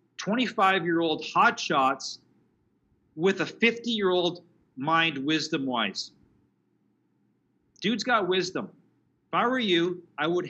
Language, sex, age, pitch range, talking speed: English, male, 40-59, 135-190 Hz, 95 wpm